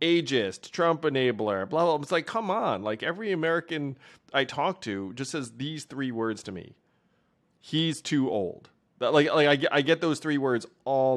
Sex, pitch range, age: male, 105-145 Hz, 30-49